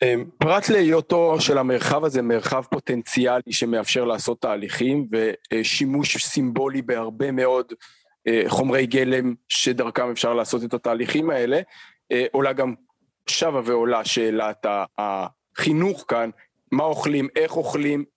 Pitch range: 120-155 Hz